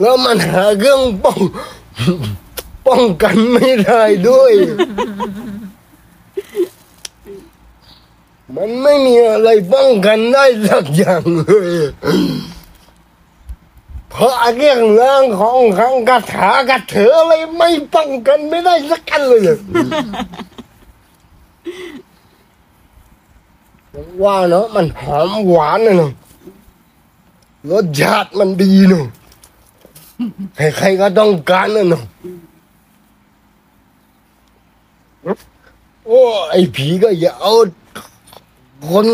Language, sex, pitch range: Thai, male, 180-255 Hz